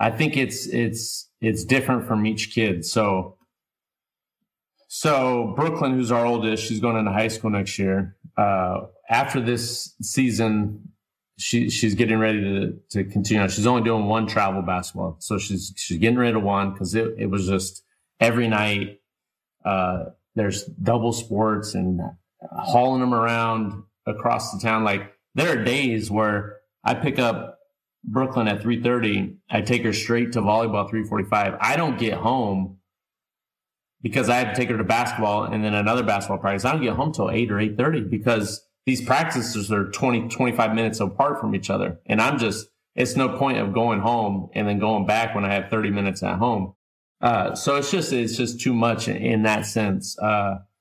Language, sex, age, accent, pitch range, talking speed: English, male, 30-49, American, 100-120 Hz, 185 wpm